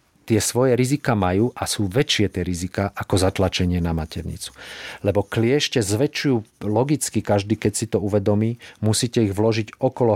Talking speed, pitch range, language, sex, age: 155 wpm, 100-115 Hz, Slovak, male, 40-59